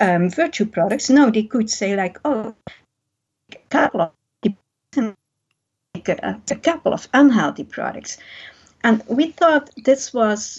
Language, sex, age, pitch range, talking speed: English, female, 50-69, 195-255 Hz, 110 wpm